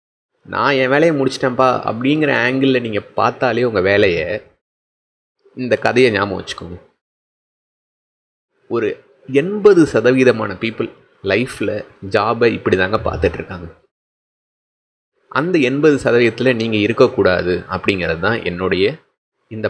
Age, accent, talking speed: 30-49, native, 95 wpm